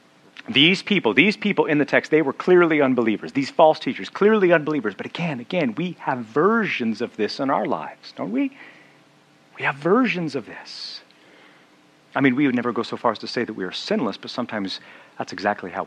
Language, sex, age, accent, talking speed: English, male, 40-59, American, 205 wpm